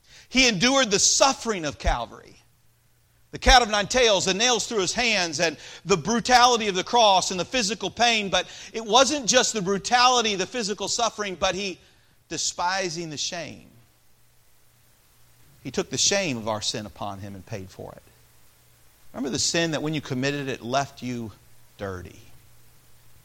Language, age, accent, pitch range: English, 40-59, American, 115-170 Hz